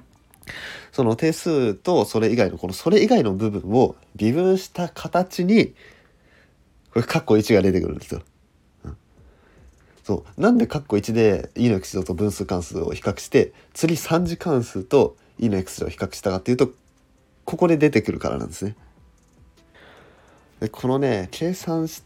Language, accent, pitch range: Japanese, native, 90-135 Hz